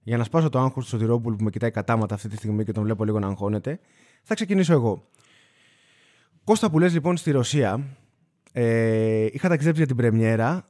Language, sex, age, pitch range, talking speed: Greek, male, 20-39, 105-150 Hz, 190 wpm